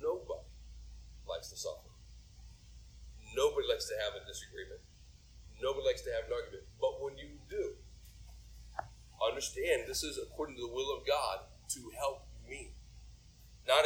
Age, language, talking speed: 40-59, English, 135 wpm